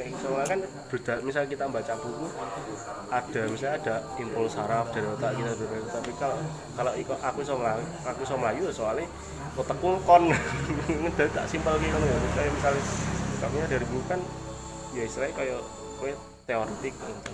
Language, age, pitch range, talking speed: Malay, 20-39, 115-150 Hz, 135 wpm